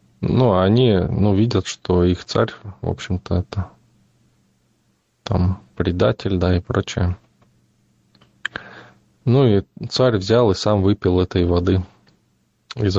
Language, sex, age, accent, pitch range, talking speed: Russian, male, 20-39, native, 90-105 Hz, 115 wpm